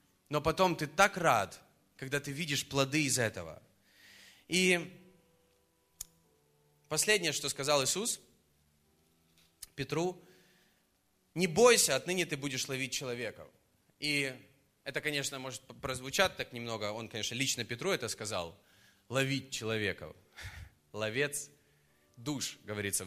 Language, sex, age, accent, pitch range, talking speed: Russian, male, 20-39, native, 110-150 Hz, 110 wpm